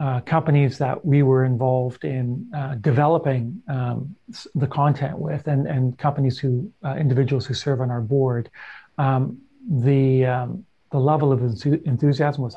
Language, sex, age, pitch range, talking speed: English, male, 40-59, 135-165 Hz, 155 wpm